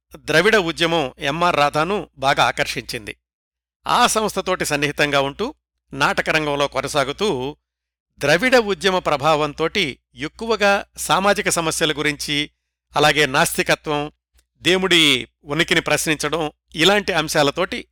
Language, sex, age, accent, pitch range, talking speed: Telugu, male, 60-79, native, 135-175 Hz, 85 wpm